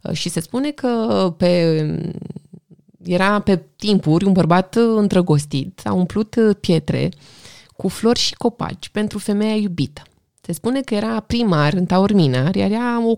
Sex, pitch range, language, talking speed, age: female, 160-210 Hz, Romanian, 140 wpm, 20-39